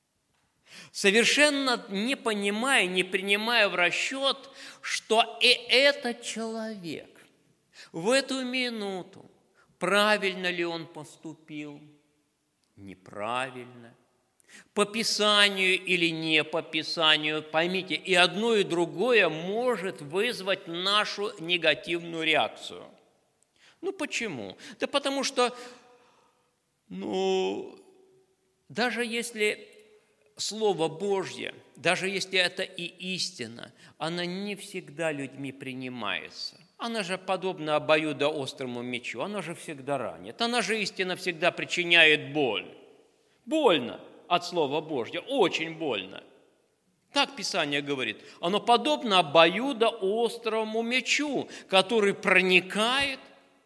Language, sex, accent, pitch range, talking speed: Russian, male, native, 160-230 Hz, 95 wpm